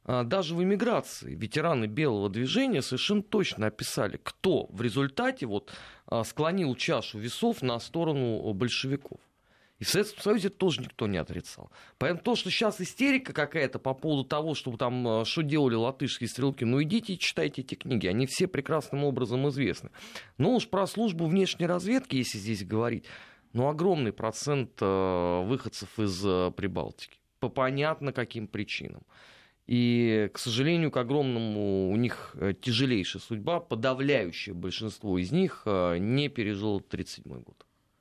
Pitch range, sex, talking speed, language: 110-150 Hz, male, 135 wpm, Russian